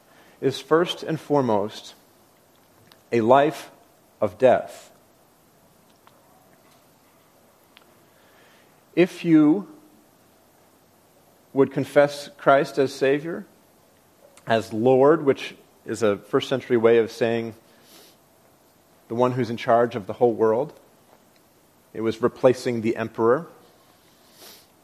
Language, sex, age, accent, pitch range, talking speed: English, male, 40-59, American, 120-165 Hz, 95 wpm